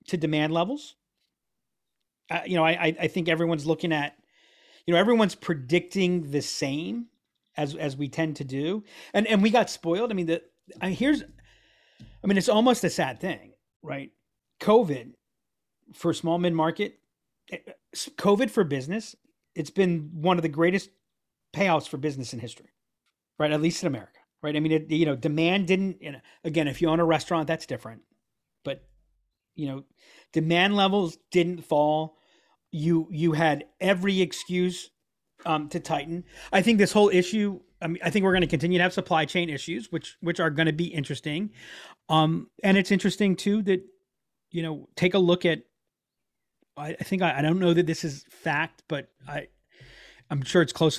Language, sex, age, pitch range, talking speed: English, male, 40-59, 155-185 Hz, 180 wpm